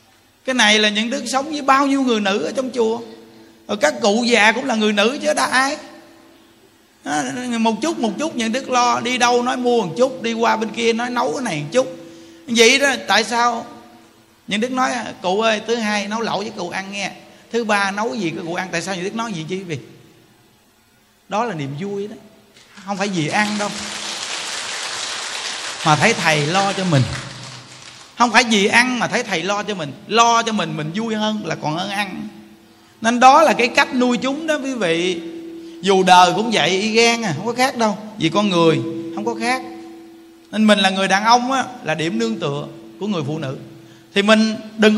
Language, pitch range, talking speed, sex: Vietnamese, 165-235 Hz, 215 wpm, male